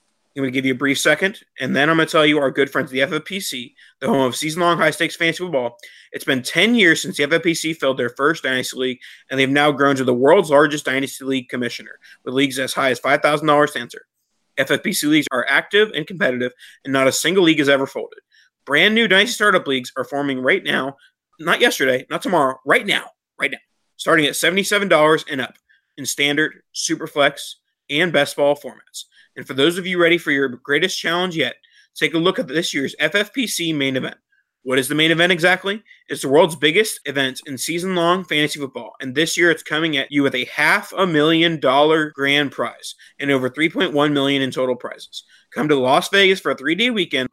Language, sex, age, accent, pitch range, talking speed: English, male, 30-49, American, 135-175 Hz, 210 wpm